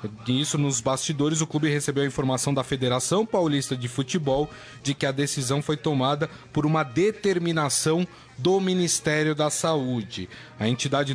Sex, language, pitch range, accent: male, Portuguese, 130-160 Hz, Brazilian